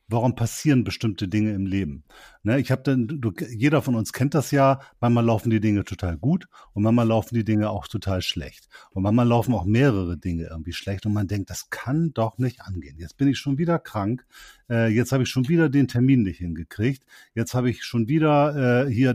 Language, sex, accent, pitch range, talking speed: German, male, German, 105-135 Hz, 220 wpm